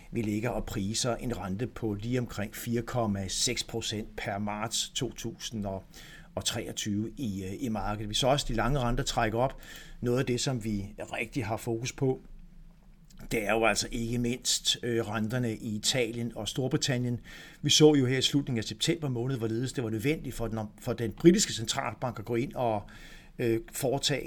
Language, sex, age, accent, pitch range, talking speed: Danish, male, 60-79, native, 110-130 Hz, 170 wpm